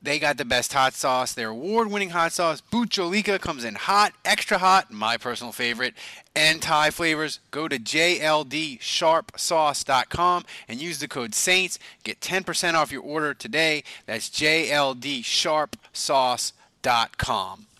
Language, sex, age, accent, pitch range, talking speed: English, male, 30-49, American, 135-190 Hz, 130 wpm